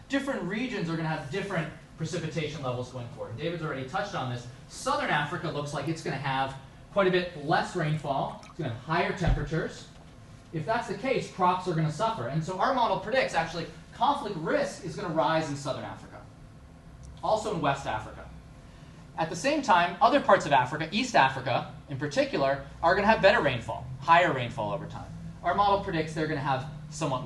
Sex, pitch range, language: male, 135-175 Hz, English